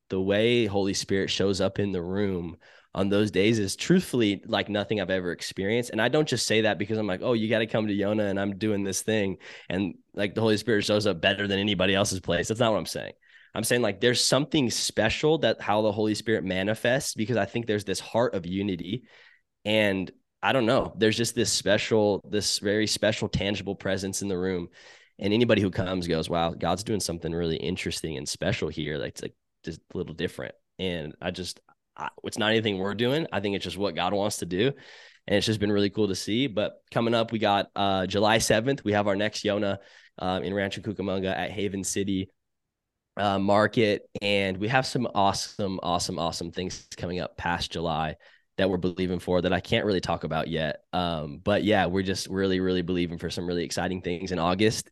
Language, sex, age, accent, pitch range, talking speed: English, male, 10-29, American, 90-110 Hz, 220 wpm